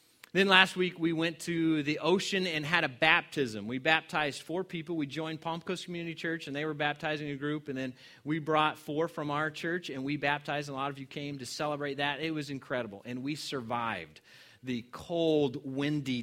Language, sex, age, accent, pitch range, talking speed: English, male, 30-49, American, 130-165 Hz, 210 wpm